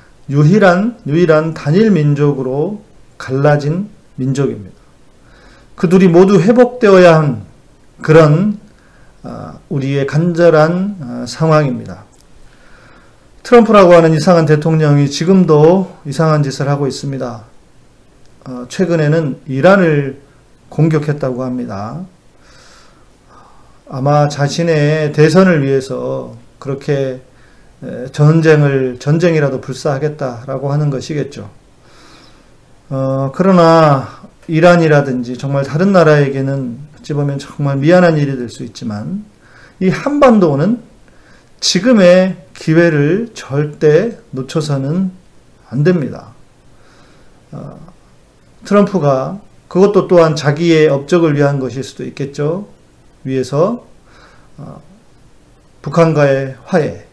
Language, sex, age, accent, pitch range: Korean, male, 40-59, native, 135-175 Hz